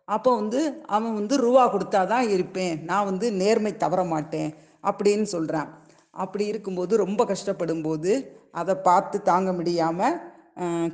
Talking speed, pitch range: 130 wpm, 175-230 Hz